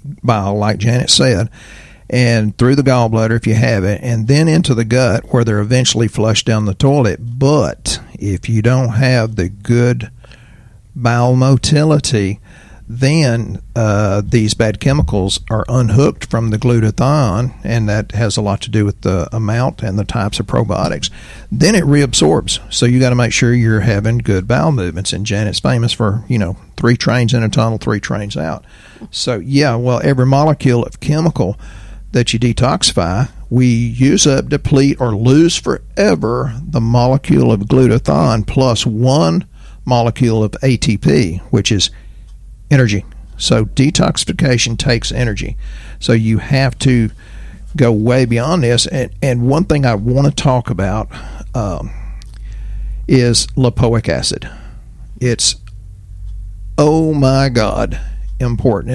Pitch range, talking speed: 110-130 Hz, 150 wpm